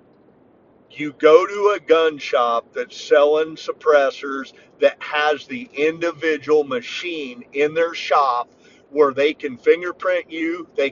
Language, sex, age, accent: English, male, 40-59, American